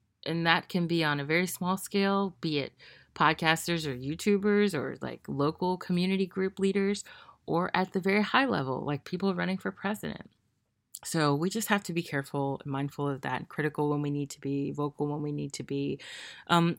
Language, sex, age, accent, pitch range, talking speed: English, female, 30-49, American, 140-165 Hz, 195 wpm